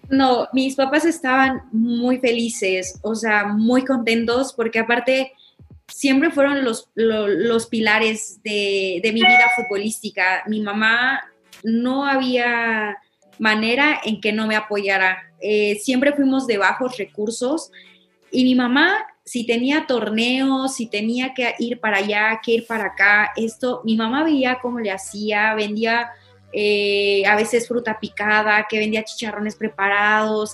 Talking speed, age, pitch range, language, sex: 140 wpm, 20-39, 210-250 Hz, Spanish, female